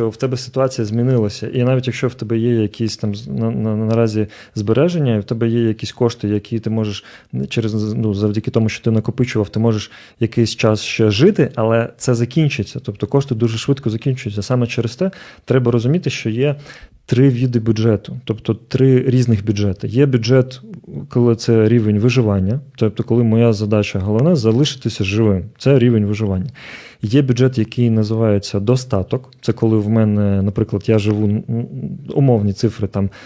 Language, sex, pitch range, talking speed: Ukrainian, male, 110-125 Hz, 170 wpm